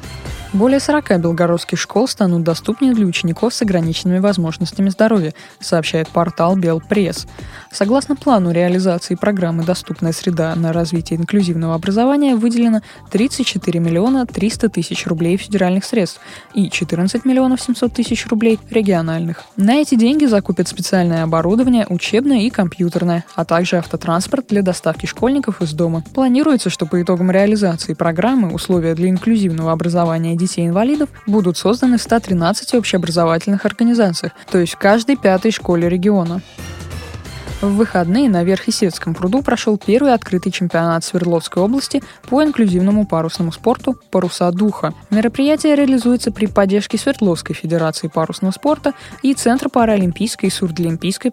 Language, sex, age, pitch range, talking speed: Russian, female, 20-39, 170-230 Hz, 130 wpm